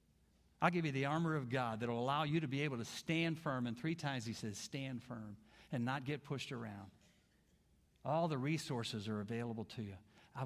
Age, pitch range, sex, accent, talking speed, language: 50-69, 110-155 Hz, male, American, 210 wpm, English